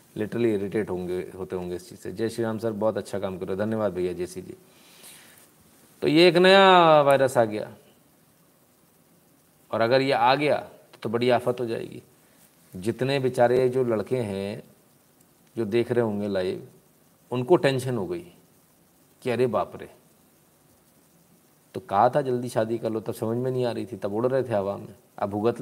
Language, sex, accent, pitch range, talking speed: Hindi, male, native, 115-135 Hz, 185 wpm